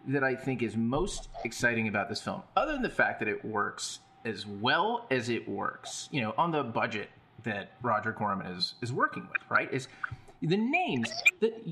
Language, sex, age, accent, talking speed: English, male, 30-49, American, 195 wpm